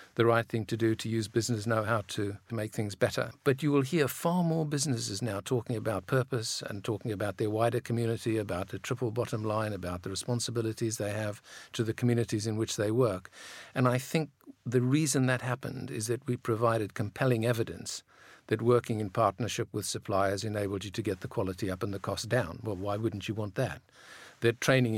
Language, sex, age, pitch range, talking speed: English, male, 50-69, 105-125 Hz, 205 wpm